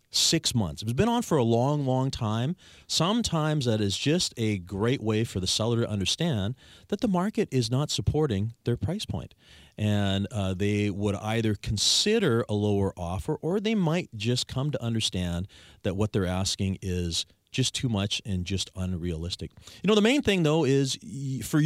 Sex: male